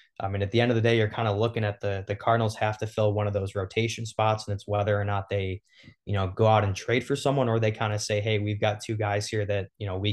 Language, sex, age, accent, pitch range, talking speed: English, male, 20-39, American, 100-110 Hz, 315 wpm